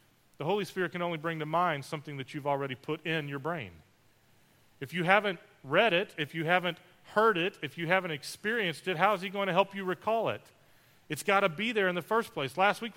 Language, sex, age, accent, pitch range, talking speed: English, male, 40-59, American, 145-195 Hz, 235 wpm